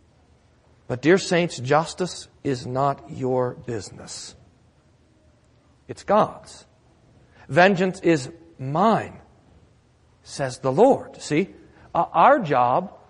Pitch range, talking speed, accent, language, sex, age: 140-200 Hz, 85 wpm, American, English, male, 40-59